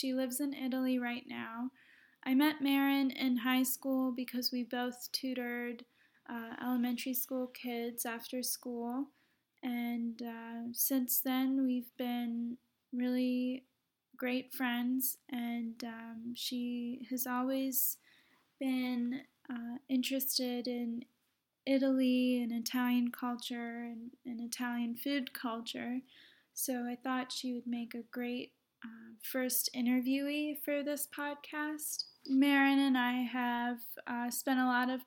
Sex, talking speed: female, 125 wpm